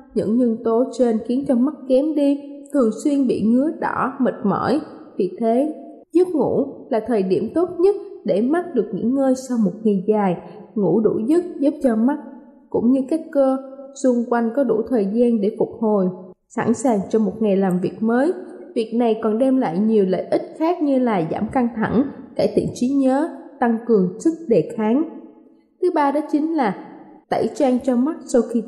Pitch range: 220-285 Hz